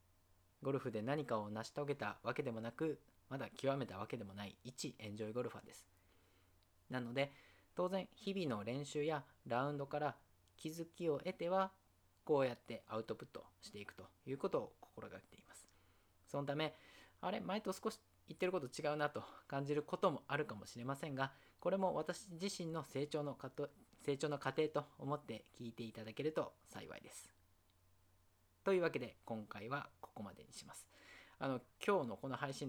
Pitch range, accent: 105-150 Hz, native